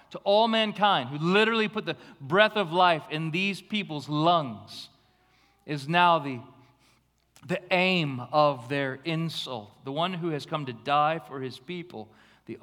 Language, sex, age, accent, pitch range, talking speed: English, male, 40-59, American, 105-150 Hz, 155 wpm